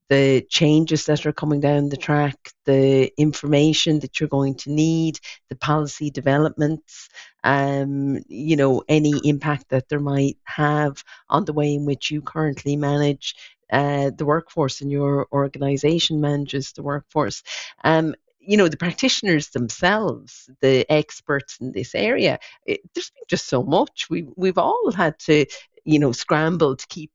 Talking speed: 155 wpm